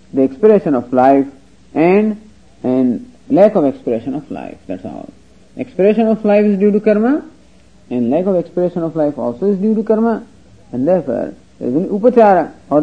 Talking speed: 175 wpm